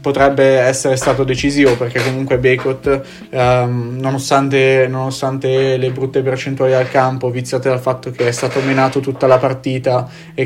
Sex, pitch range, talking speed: male, 125-135 Hz, 150 wpm